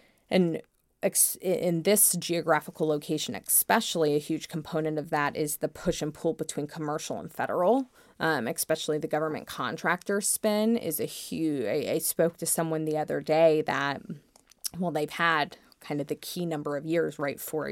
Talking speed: 170 wpm